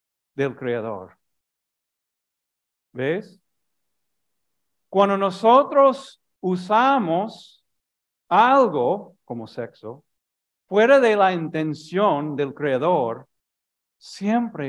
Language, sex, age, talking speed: Spanish, male, 50-69, 65 wpm